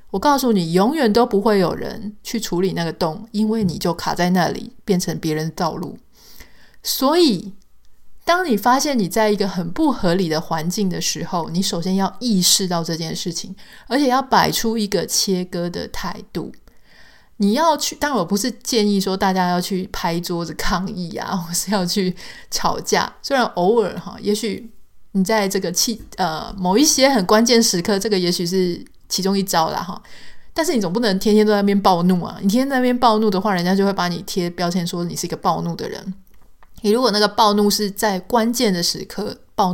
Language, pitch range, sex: Chinese, 180-220 Hz, female